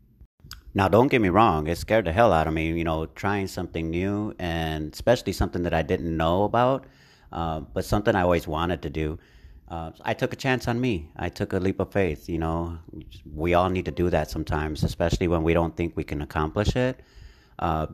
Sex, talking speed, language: male, 215 wpm, English